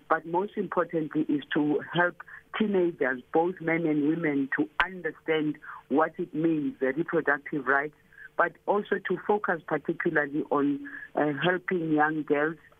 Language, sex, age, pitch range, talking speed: English, female, 50-69, 150-170 Hz, 135 wpm